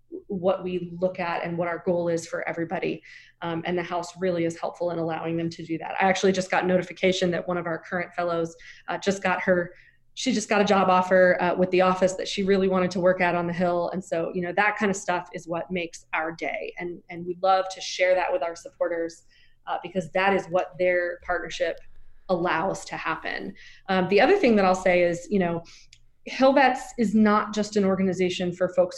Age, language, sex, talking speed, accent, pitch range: 20-39, English, female, 230 wpm, American, 175-195 Hz